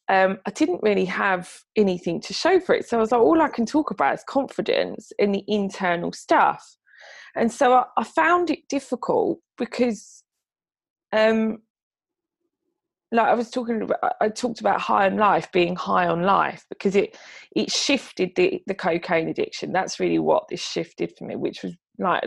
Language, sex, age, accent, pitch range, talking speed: English, female, 20-39, British, 190-250 Hz, 180 wpm